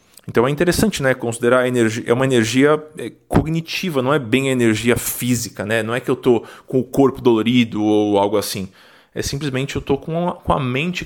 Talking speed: 205 wpm